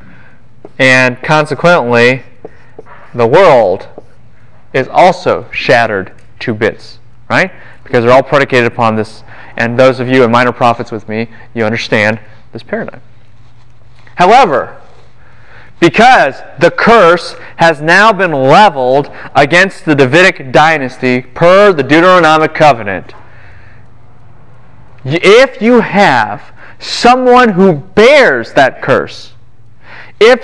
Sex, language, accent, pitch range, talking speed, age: male, English, American, 120-180 Hz, 105 wpm, 30-49